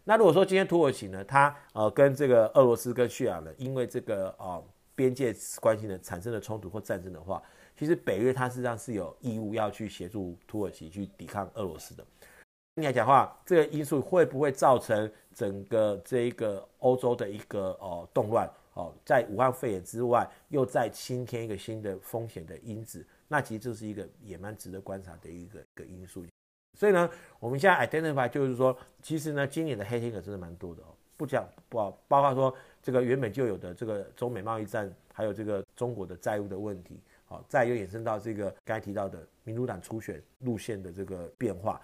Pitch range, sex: 95-125 Hz, male